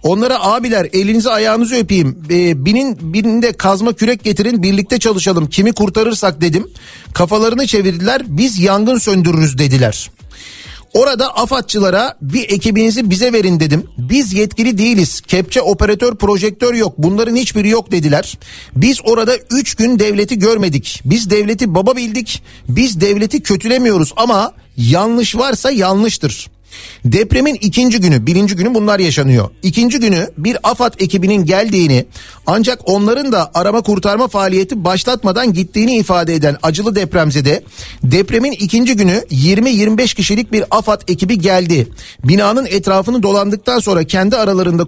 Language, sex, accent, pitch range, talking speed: Turkish, male, native, 175-230 Hz, 130 wpm